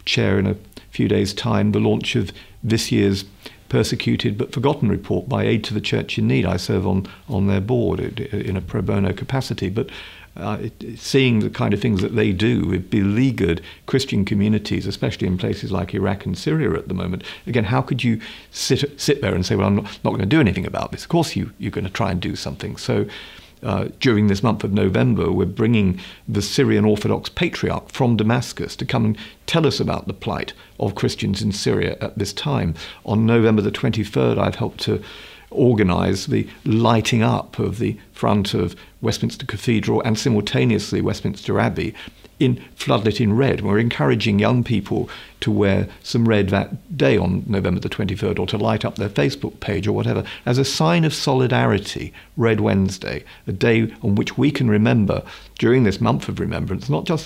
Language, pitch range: English, 100-120 Hz